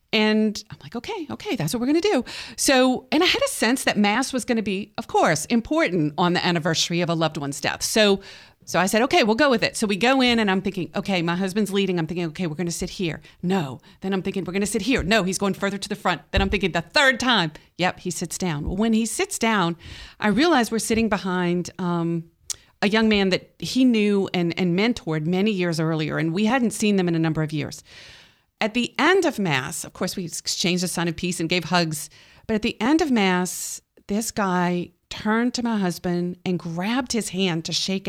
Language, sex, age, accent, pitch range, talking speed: English, female, 40-59, American, 175-235 Hz, 245 wpm